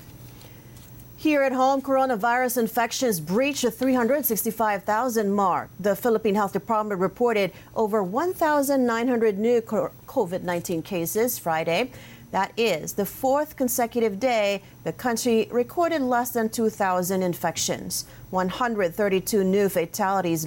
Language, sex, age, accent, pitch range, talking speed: English, female, 40-59, American, 180-240 Hz, 105 wpm